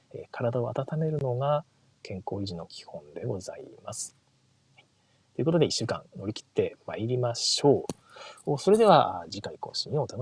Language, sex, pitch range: Japanese, male, 125-165 Hz